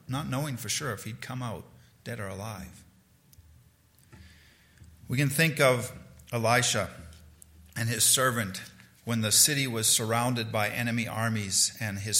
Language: English